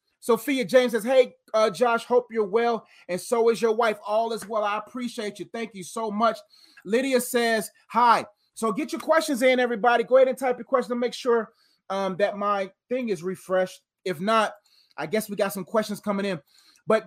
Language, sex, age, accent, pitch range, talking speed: English, male, 30-49, American, 200-245 Hz, 205 wpm